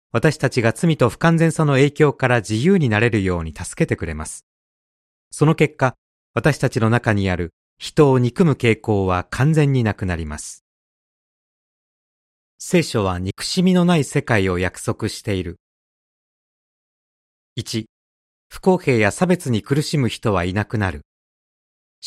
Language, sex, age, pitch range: Japanese, male, 40-59, 90-140 Hz